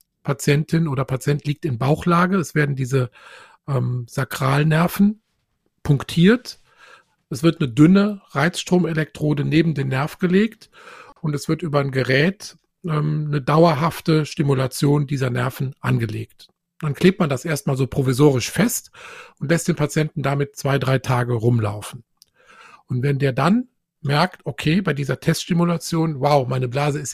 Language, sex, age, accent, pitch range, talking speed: German, male, 50-69, German, 135-165 Hz, 140 wpm